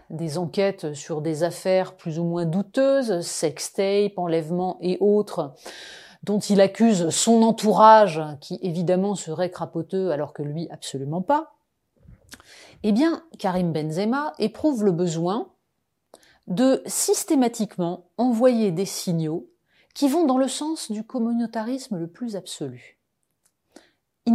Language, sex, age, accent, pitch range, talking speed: French, female, 30-49, French, 175-245 Hz, 125 wpm